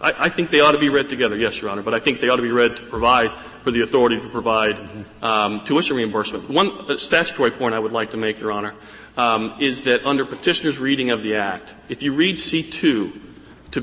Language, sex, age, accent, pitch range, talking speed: English, male, 40-59, American, 115-145 Hz, 230 wpm